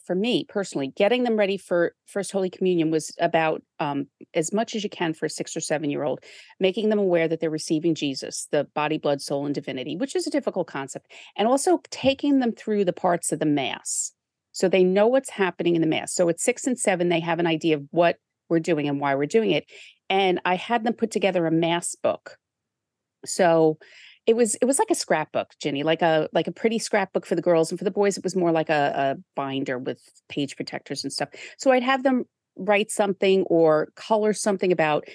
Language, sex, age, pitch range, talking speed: English, female, 40-59, 155-205 Hz, 225 wpm